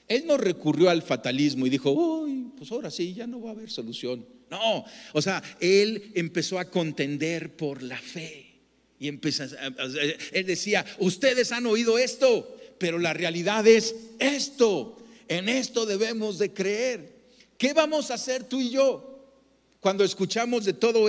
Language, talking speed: Spanish, 170 wpm